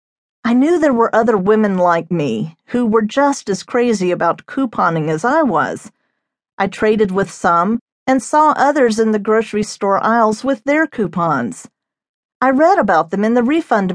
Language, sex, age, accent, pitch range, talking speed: English, female, 50-69, American, 190-255 Hz, 170 wpm